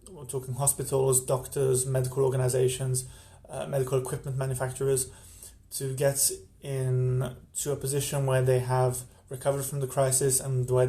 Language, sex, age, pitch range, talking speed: English, male, 20-39, 125-140 Hz, 140 wpm